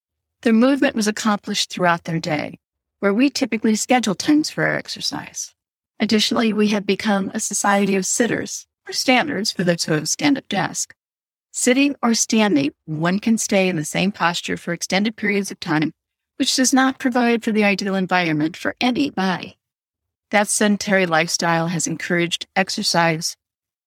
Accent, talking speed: American, 155 wpm